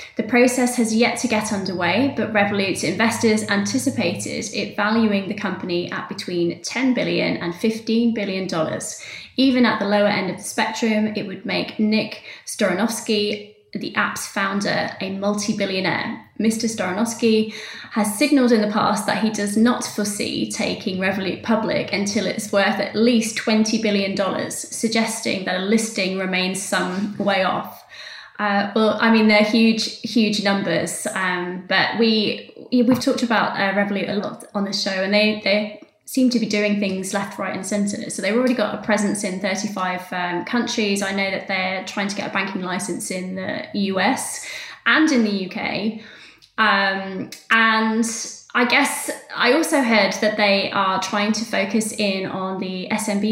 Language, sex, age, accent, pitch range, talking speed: English, female, 20-39, British, 195-225 Hz, 165 wpm